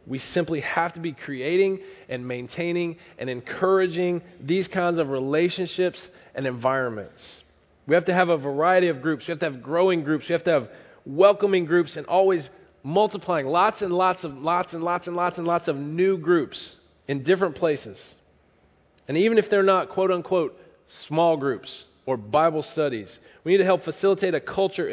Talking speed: 180 wpm